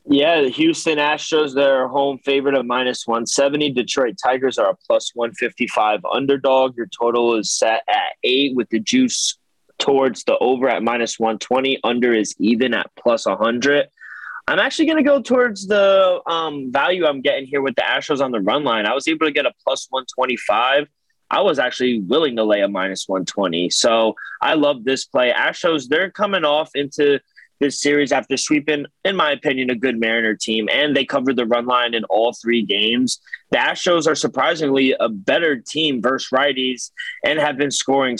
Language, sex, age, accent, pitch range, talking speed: English, male, 20-39, American, 120-145 Hz, 185 wpm